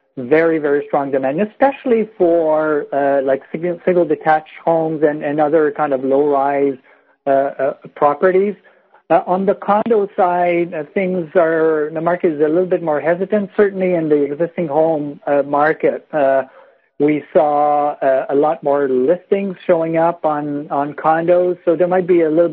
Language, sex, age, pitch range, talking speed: English, male, 60-79, 140-170 Hz, 160 wpm